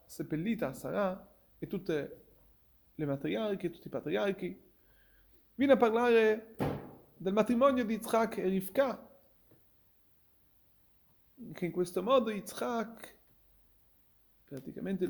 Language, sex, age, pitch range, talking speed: Italian, male, 30-49, 160-235 Hz, 95 wpm